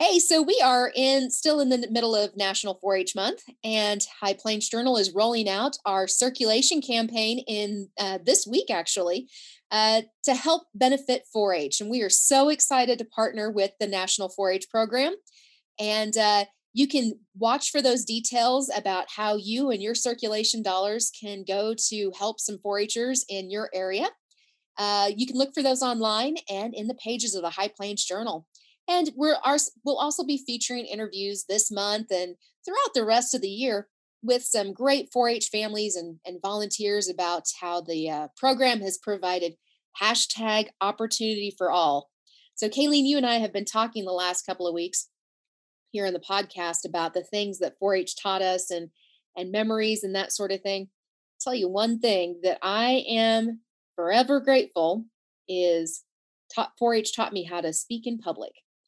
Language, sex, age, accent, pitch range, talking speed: English, female, 30-49, American, 195-245 Hz, 175 wpm